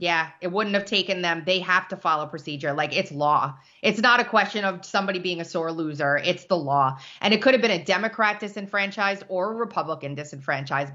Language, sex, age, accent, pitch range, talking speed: English, female, 20-39, American, 175-235 Hz, 215 wpm